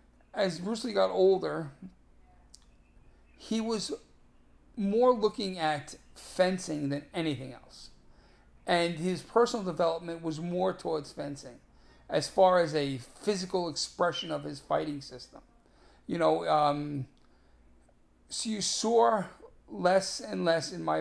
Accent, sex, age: American, male, 40-59